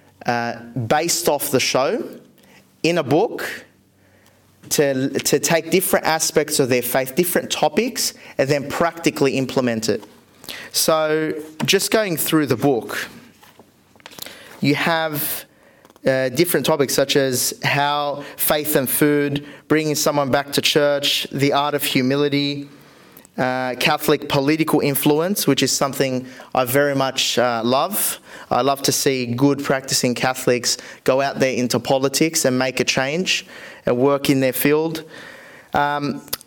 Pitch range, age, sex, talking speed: 130-155 Hz, 30-49, male, 135 wpm